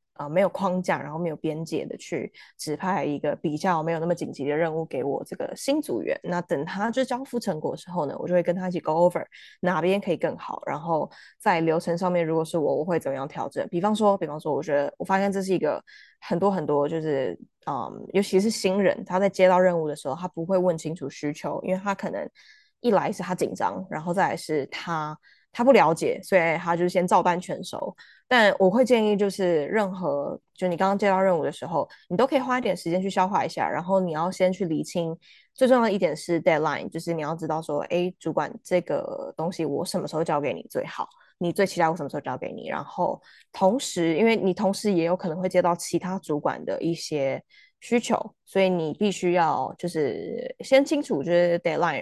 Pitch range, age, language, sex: 165-195 Hz, 20-39, Chinese, female